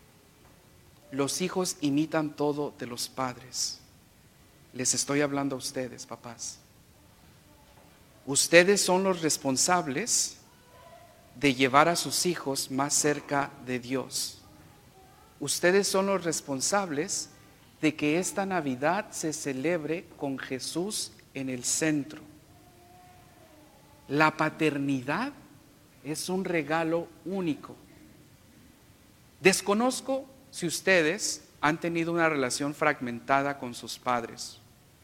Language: English